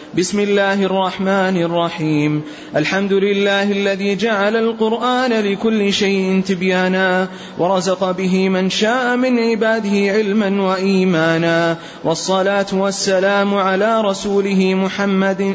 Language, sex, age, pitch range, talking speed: Arabic, male, 30-49, 185-200 Hz, 95 wpm